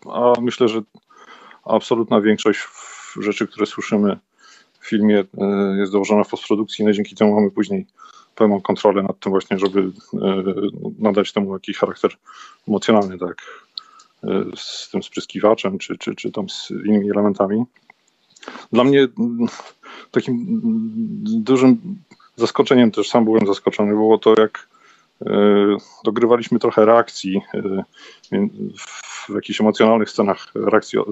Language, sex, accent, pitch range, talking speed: Polish, male, native, 100-120 Hz, 120 wpm